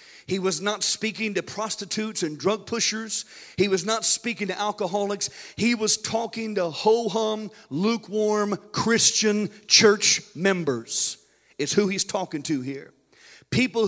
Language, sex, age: English, male, 50-69